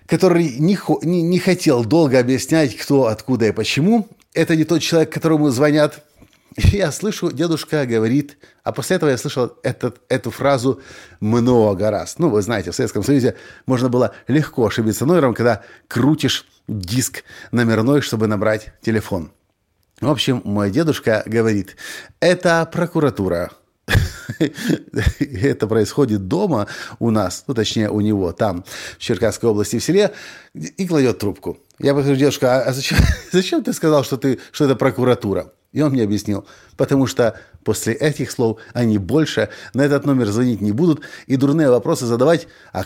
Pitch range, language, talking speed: 110-150 Hz, Russian, 150 wpm